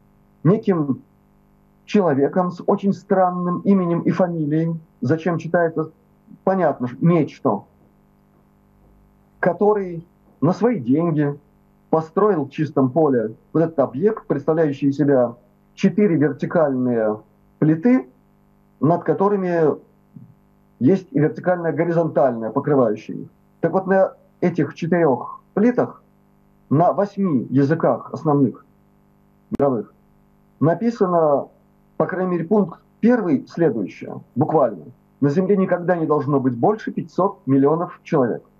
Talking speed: 100 wpm